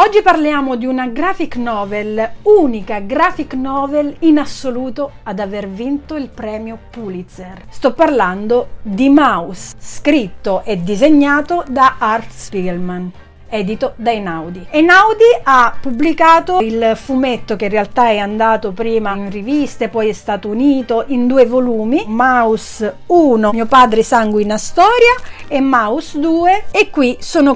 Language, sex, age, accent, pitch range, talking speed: Italian, female, 40-59, native, 220-295 Hz, 135 wpm